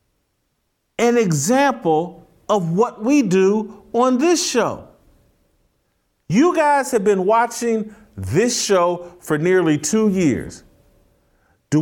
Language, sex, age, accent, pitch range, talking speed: English, male, 40-59, American, 185-240 Hz, 105 wpm